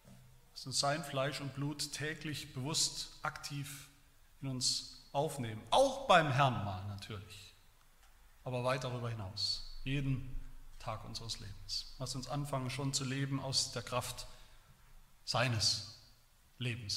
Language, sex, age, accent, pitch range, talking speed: German, male, 40-59, German, 110-155 Hz, 125 wpm